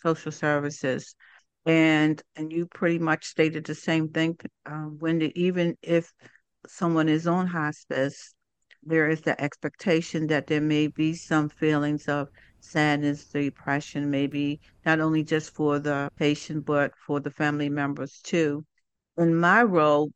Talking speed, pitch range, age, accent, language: 145 wpm, 145-165 Hz, 60-79, American, English